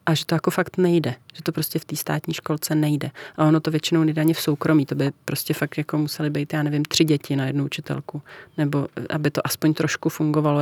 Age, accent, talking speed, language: 30-49, native, 235 wpm, Czech